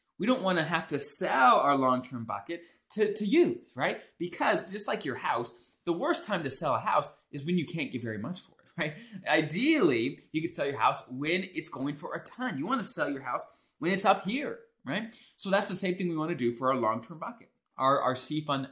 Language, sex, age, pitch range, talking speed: English, male, 20-39, 120-175 Hz, 245 wpm